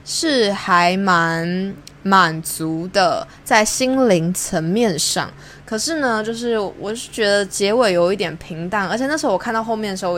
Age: 20-39